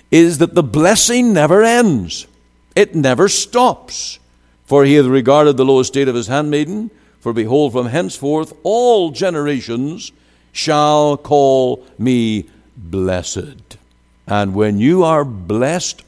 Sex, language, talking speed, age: male, English, 125 wpm, 60-79